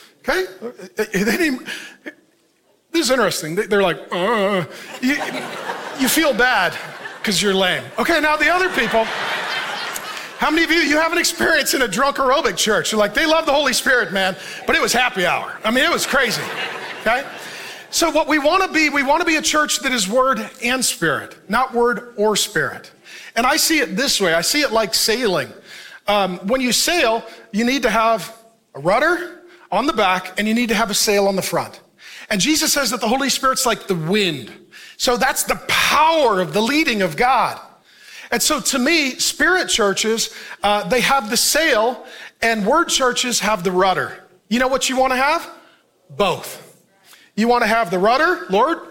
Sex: male